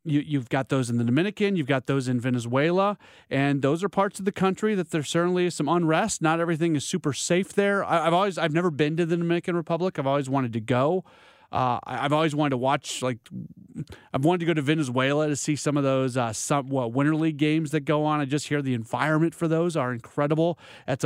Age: 30-49